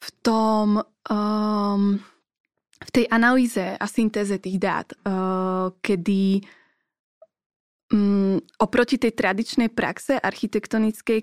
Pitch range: 195-225 Hz